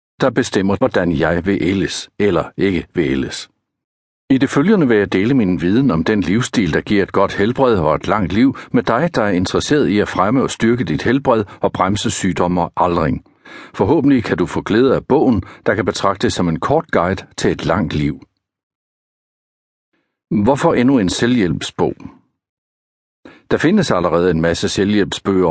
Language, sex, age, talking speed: Danish, male, 60-79, 175 wpm